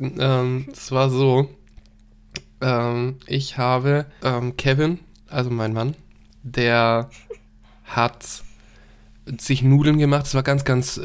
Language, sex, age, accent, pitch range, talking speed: German, male, 10-29, German, 125-145 Hz, 115 wpm